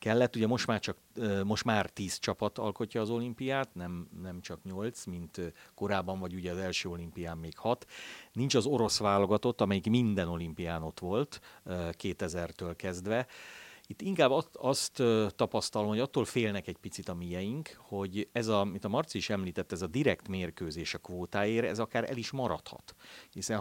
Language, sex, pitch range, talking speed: Hungarian, male, 90-115 Hz, 165 wpm